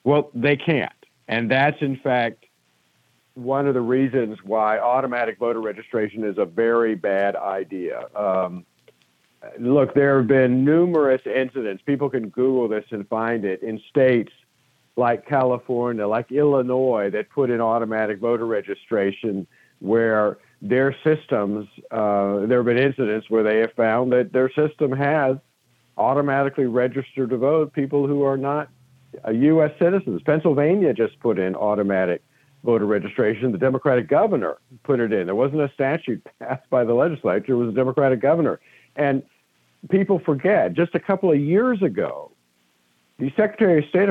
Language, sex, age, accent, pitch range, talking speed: English, male, 50-69, American, 115-150 Hz, 150 wpm